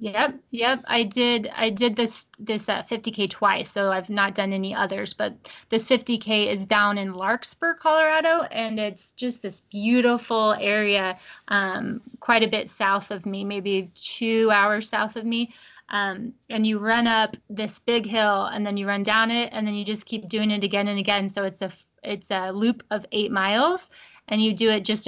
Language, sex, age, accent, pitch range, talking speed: English, female, 20-39, American, 205-235 Hz, 200 wpm